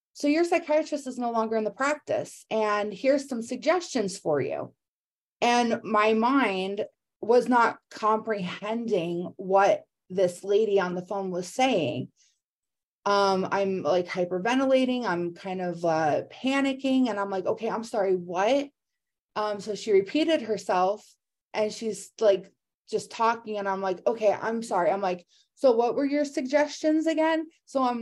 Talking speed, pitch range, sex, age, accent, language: 150 wpm, 195-255 Hz, female, 30-49, American, English